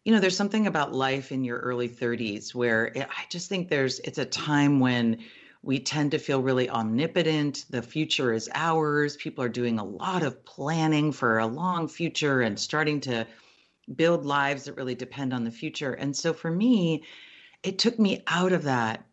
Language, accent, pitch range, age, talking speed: English, American, 120-165 Hz, 40-59, 190 wpm